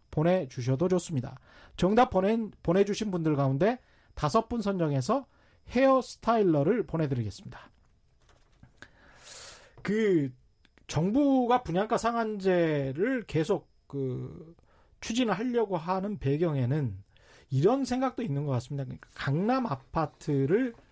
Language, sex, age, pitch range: Korean, male, 30-49, 140-210 Hz